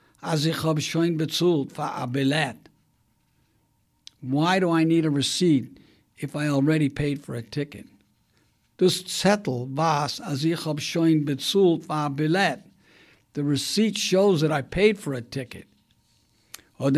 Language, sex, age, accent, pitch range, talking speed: English, male, 60-79, American, 115-160 Hz, 140 wpm